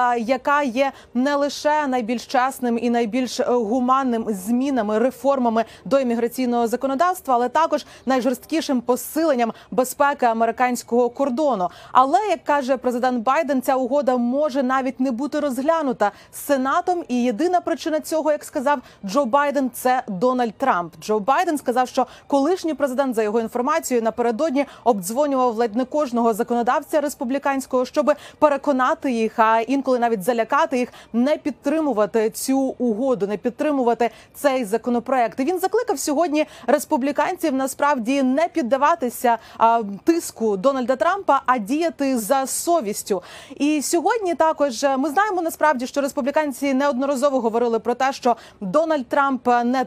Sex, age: female, 30-49